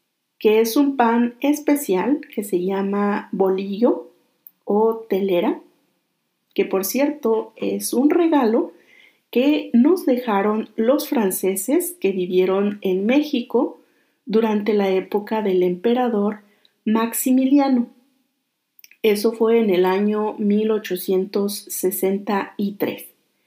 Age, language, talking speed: 40-59, Spanish, 95 wpm